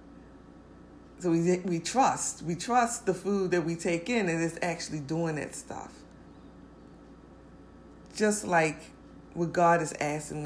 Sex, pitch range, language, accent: female, 150-180 Hz, English, American